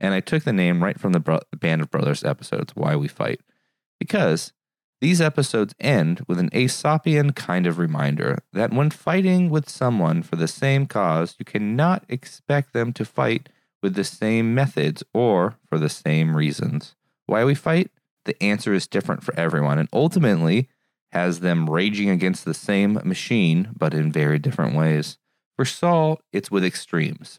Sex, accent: male, American